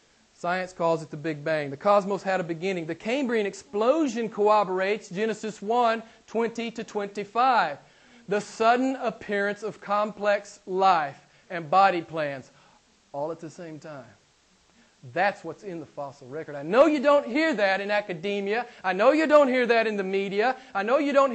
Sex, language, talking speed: male, English, 170 wpm